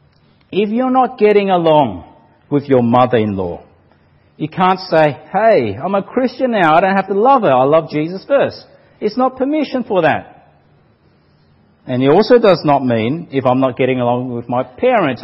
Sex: male